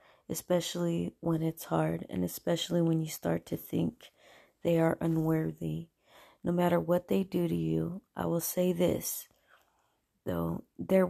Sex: female